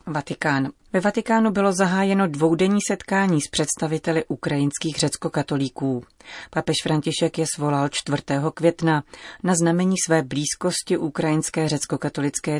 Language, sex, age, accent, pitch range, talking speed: Czech, female, 30-49, native, 140-165 Hz, 110 wpm